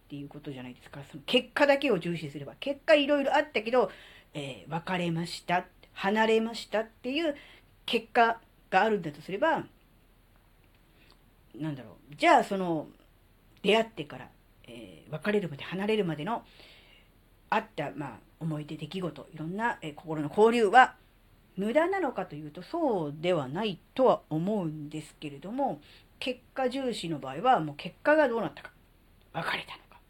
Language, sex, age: Japanese, female, 40-59